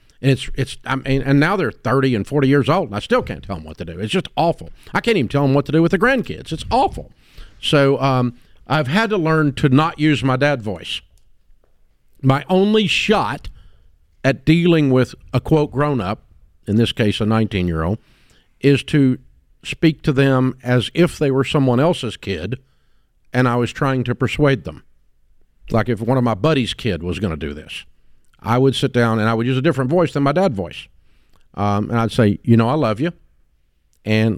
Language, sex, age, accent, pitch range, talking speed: English, male, 50-69, American, 110-145 Hz, 210 wpm